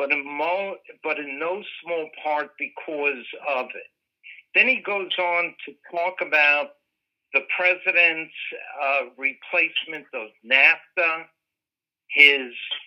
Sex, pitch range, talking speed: male, 140-170 Hz, 105 wpm